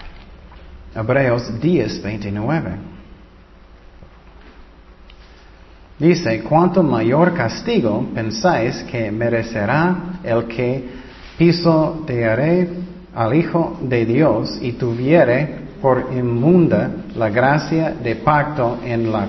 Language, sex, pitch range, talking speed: Spanish, male, 110-170 Hz, 85 wpm